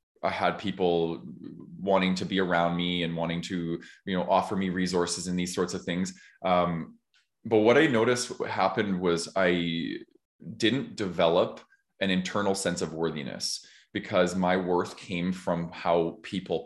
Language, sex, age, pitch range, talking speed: English, male, 20-39, 85-95 Hz, 155 wpm